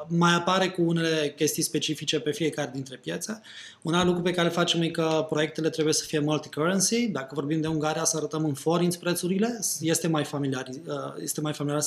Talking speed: 180 wpm